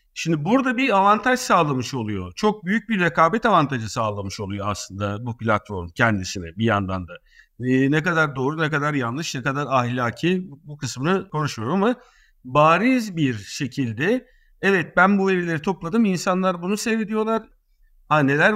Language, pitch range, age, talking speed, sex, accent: Turkish, 125-205 Hz, 50-69, 150 wpm, male, native